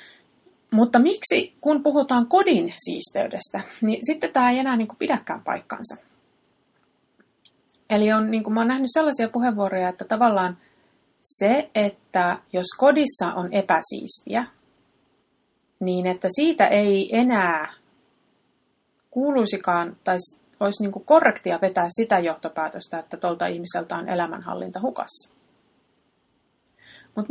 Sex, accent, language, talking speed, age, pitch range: female, native, Finnish, 105 wpm, 30-49, 185-265 Hz